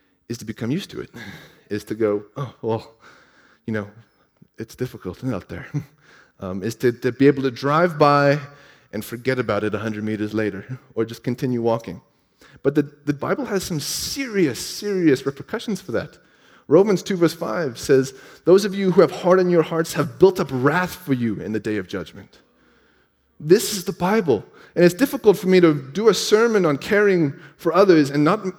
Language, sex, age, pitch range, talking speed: English, male, 30-49, 120-175 Hz, 190 wpm